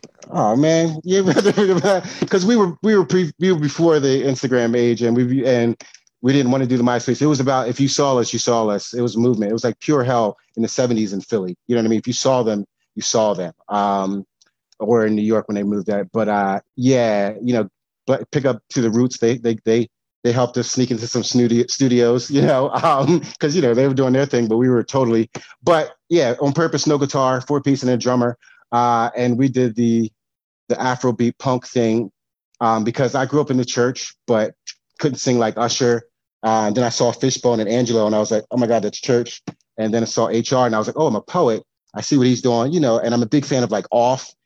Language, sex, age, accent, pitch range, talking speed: English, male, 30-49, American, 115-135 Hz, 250 wpm